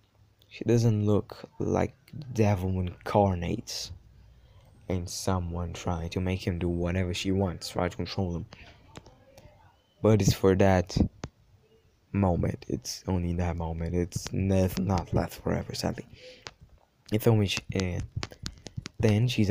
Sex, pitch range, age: male, 90-110 Hz, 20-39